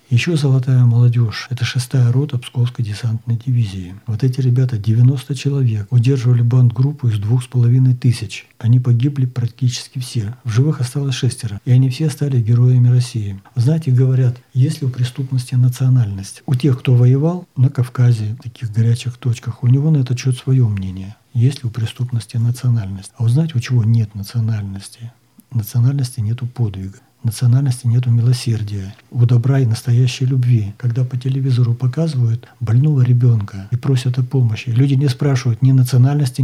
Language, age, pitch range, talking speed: Russian, 60-79, 120-135 Hz, 165 wpm